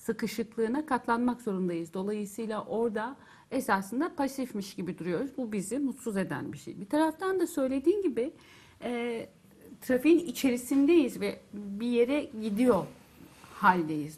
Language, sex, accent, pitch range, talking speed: Turkish, female, native, 195-260 Hz, 115 wpm